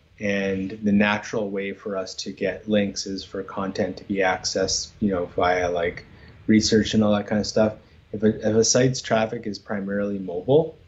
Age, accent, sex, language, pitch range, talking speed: 20-39, American, male, English, 95-105 Hz, 190 wpm